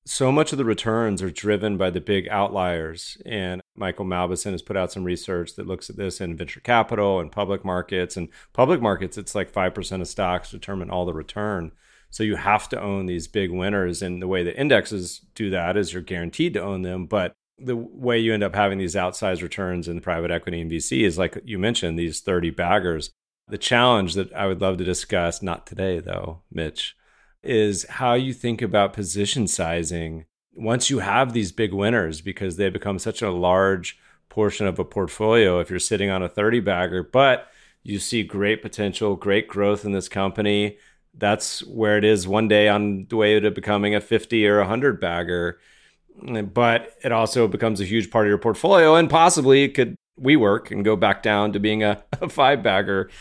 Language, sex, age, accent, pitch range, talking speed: English, male, 40-59, American, 90-110 Hz, 195 wpm